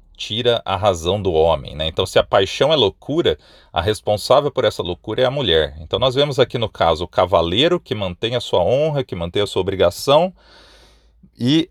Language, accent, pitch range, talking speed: Portuguese, Brazilian, 90-120 Hz, 200 wpm